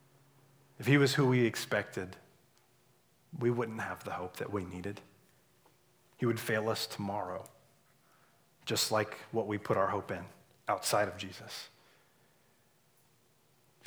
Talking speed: 135 wpm